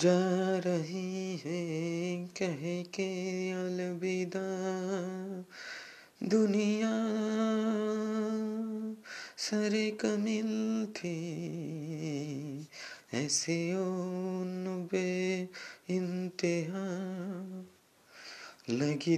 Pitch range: 175-210 Hz